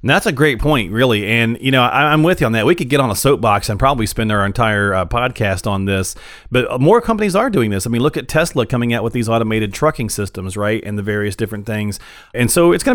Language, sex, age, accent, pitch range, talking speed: English, male, 40-59, American, 105-145 Hz, 270 wpm